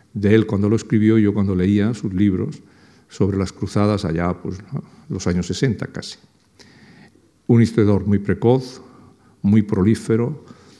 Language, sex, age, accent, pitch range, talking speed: Spanish, male, 50-69, Spanish, 95-115 Hz, 145 wpm